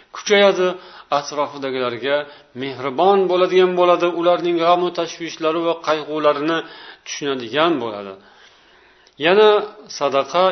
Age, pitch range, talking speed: 50-69, 150-190 Hz, 95 wpm